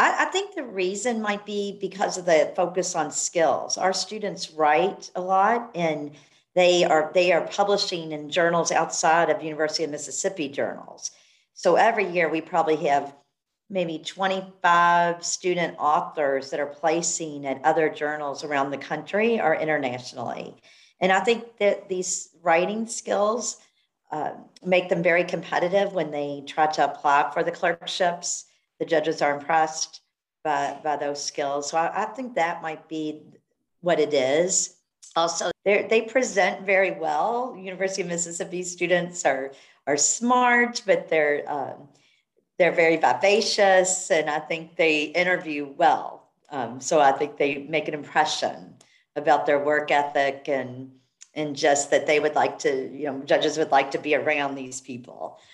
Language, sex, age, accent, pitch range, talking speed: English, female, 50-69, American, 150-185 Hz, 155 wpm